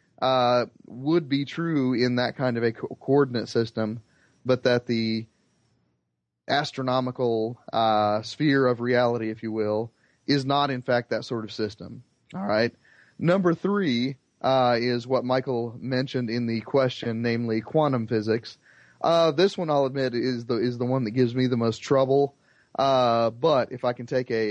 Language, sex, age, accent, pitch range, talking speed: English, male, 30-49, American, 115-130 Hz, 170 wpm